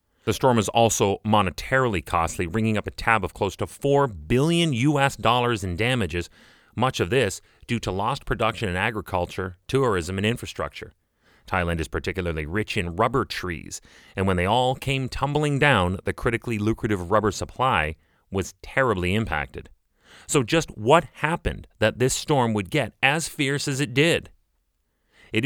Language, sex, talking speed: English, male, 160 wpm